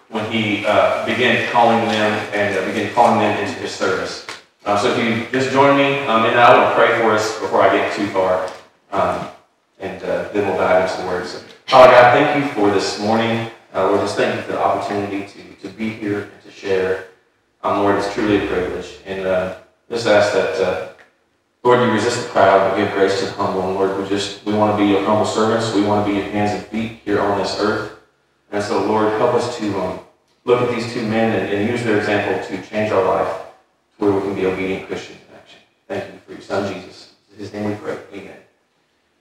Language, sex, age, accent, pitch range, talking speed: English, male, 30-49, American, 95-115 Hz, 235 wpm